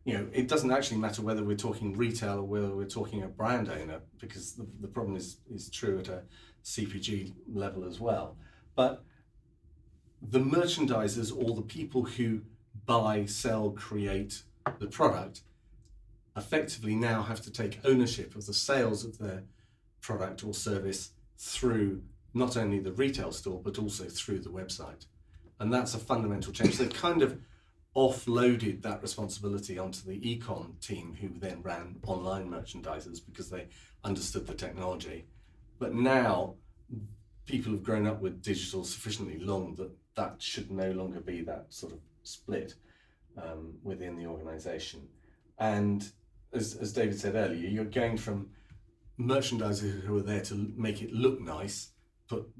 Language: English